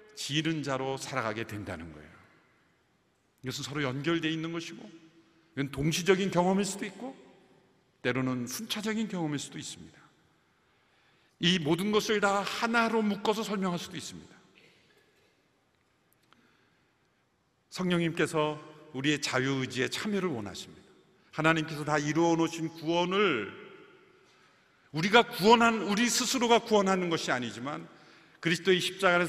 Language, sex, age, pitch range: Korean, male, 50-69, 170-240 Hz